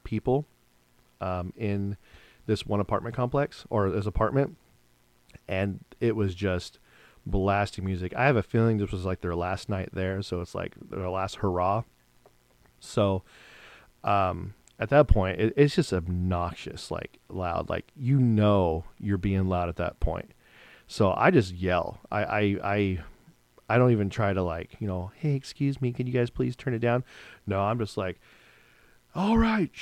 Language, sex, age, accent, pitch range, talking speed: English, male, 40-59, American, 95-125 Hz, 165 wpm